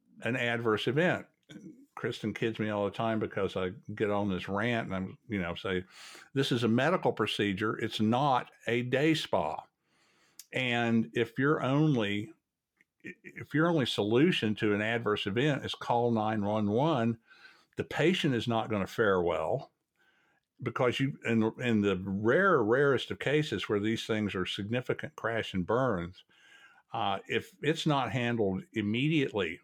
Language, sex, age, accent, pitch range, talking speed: English, male, 60-79, American, 110-135 Hz, 155 wpm